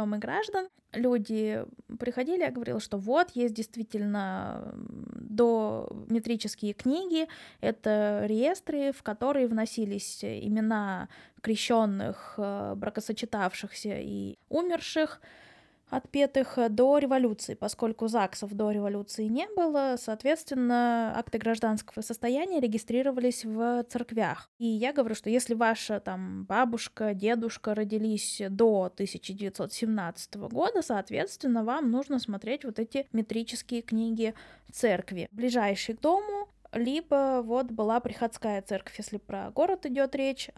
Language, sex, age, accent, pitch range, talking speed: Russian, female, 20-39, native, 215-265 Hz, 110 wpm